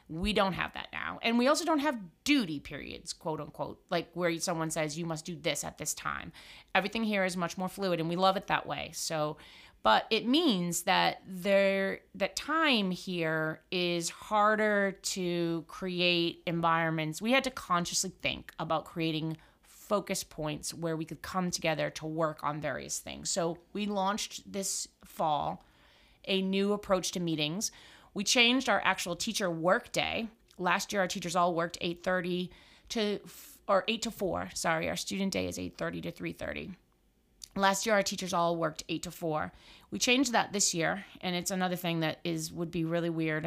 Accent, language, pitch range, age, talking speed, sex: American, English, 165-195 Hz, 30-49, 180 wpm, female